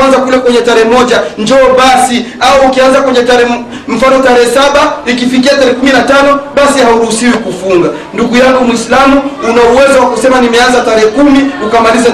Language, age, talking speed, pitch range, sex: Swahili, 40-59, 155 wpm, 250-280 Hz, male